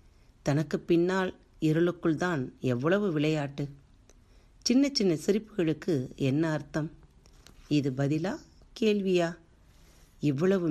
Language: Tamil